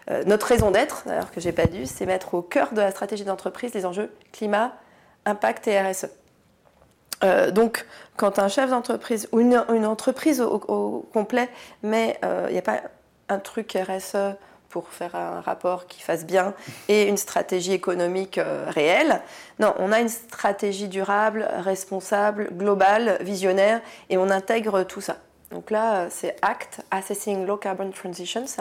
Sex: female